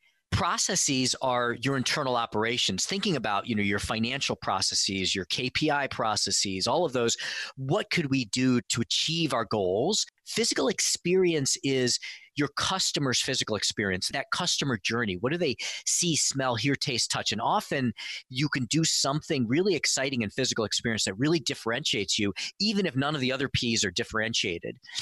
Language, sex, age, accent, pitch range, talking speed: English, male, 40-59, American, 115-155 Hz, 165 wpm